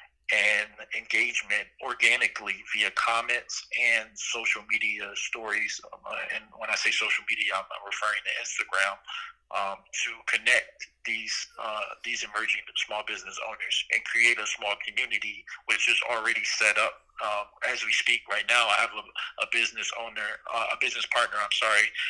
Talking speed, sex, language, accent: 155 wpm, male, English, American